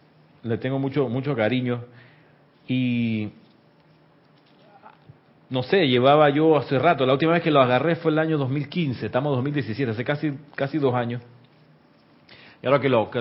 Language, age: Spanish, 40-59